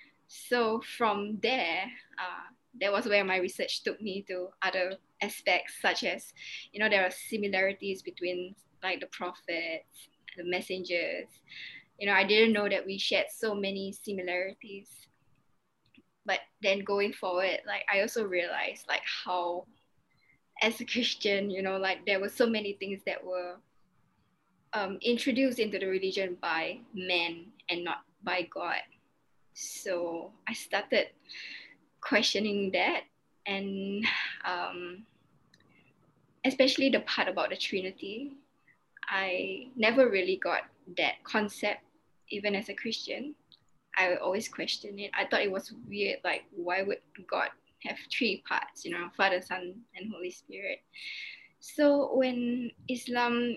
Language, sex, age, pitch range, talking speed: English, female, 10-29, 185-225 Hz, 135 wpm